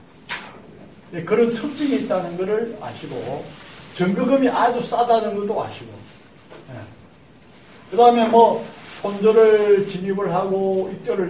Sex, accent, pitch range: male, native, 180-235 Hz